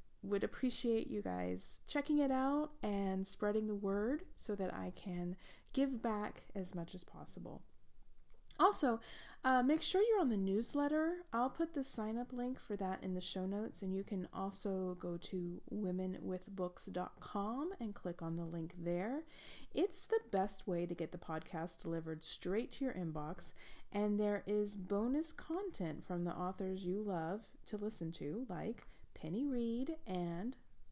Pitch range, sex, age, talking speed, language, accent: 185-275 Hz, female, 30-49, 165 wpm, English, American